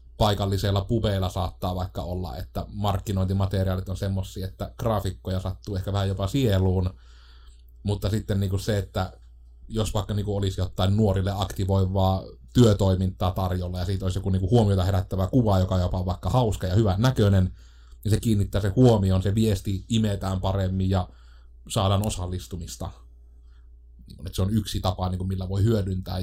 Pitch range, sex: 90-110 Hz, male